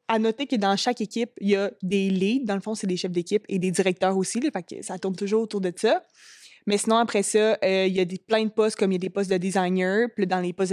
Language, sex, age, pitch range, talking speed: French, female, 20-39, 185-215 Hz, 300 wpm